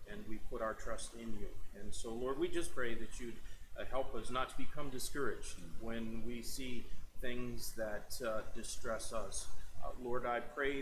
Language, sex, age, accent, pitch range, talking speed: English, male, 40-59, American, 105-130 Hz, 190 wpm